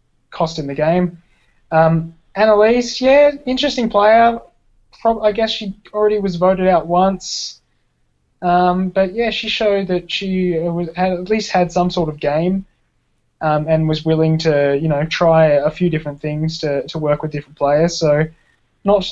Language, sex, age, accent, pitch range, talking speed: English, male, 20-39, Australian, 145-180 Hz, 165 wpm